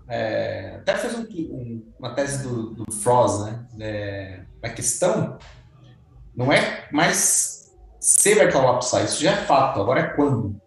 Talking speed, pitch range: 150 wpm, 110-160 Hz